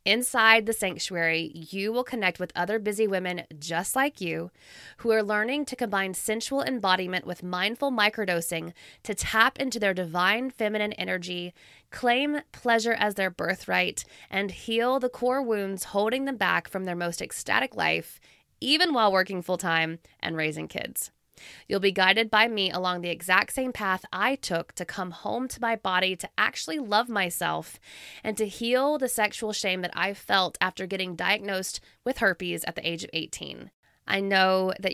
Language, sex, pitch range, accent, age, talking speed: English, female, 180-230 Hz, American, 20-39, 170 wpm